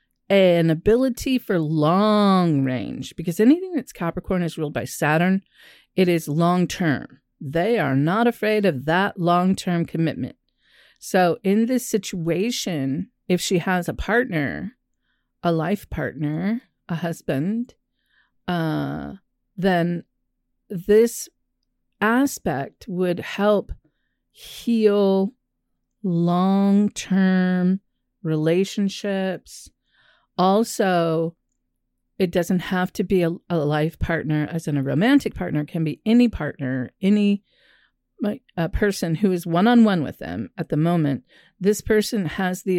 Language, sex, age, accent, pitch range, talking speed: English, female, 40-59, American, 165-210 Hz, 120 wpm